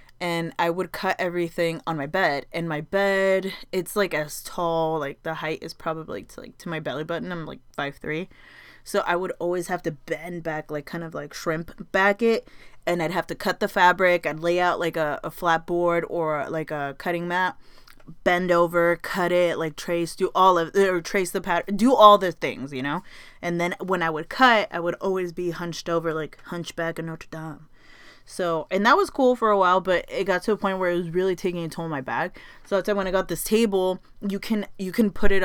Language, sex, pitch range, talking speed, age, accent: English, female, 165-200 Hz, 230 wpm, 20-39, American